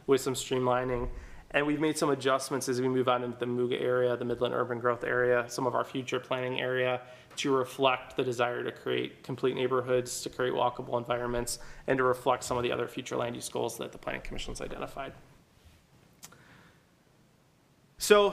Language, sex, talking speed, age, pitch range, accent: English, male, 185 wpm, 20-39, 125-135 Hz, American